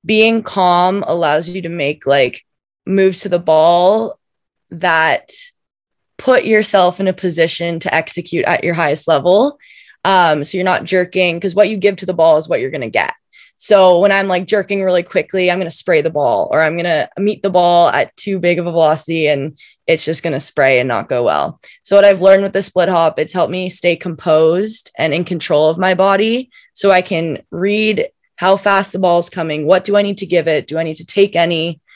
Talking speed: 225 wpm